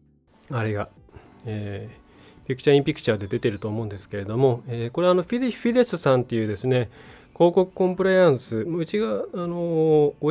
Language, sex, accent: Japanese, male, native